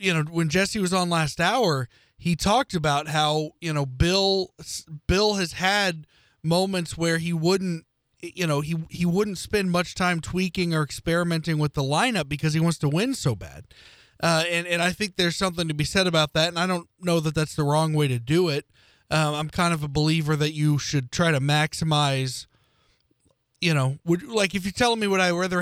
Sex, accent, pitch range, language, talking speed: male, American, 145-185 Hz, English, 210 wpm